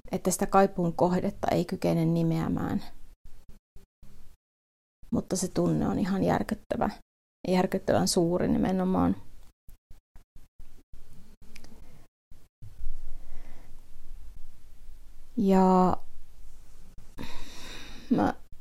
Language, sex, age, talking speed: Finnish, female, 20-39, 60 wpm